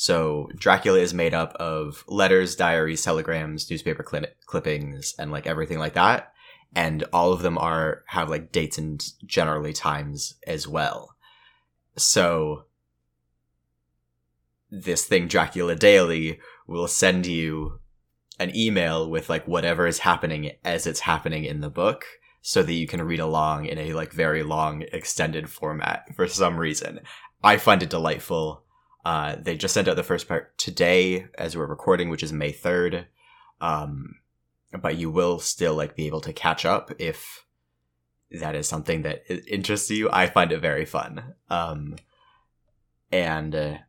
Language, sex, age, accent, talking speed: English, male, 20-39, American, 150 wpm